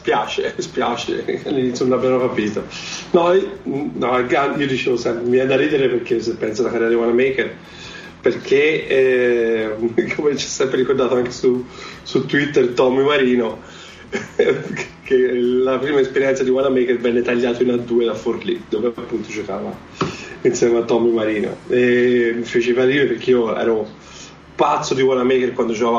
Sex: male